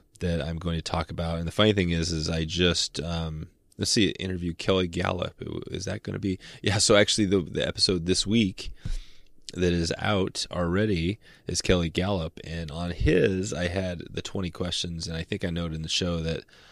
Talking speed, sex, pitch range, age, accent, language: 205 wpm, male, 85-95 Hz, 20-39, American, English